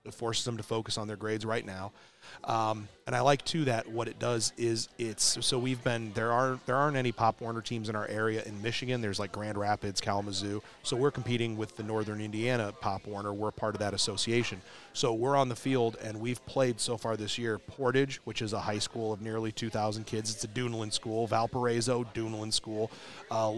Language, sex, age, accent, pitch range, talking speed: English, male, 30-49, American, 110-125 Hz, 220 wpm